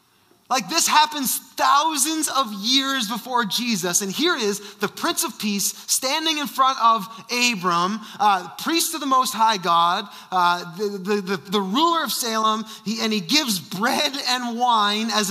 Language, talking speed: English, 170 wpm